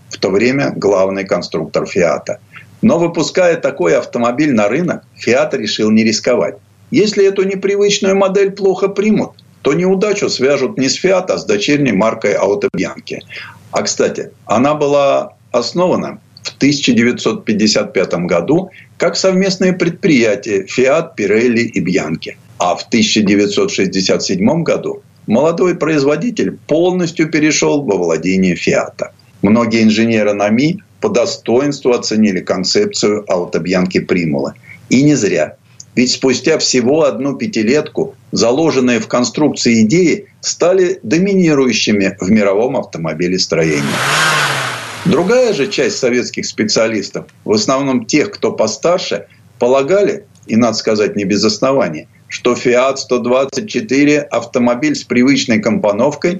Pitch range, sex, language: 110-185 Hz, male, Russian